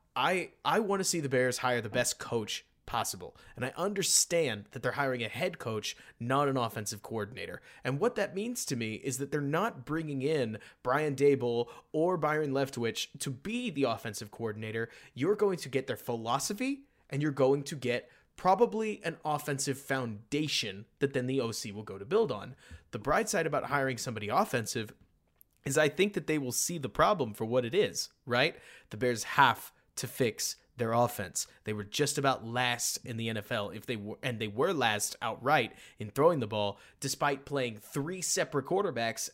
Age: 30-49